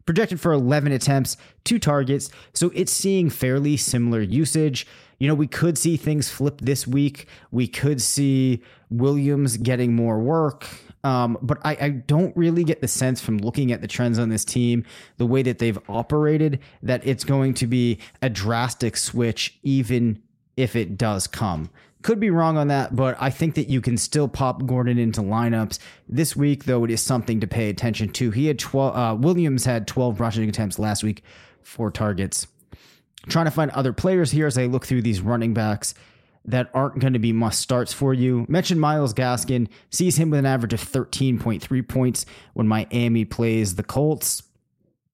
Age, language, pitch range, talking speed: 30-49, English, 115-145 Hz, 185 wpm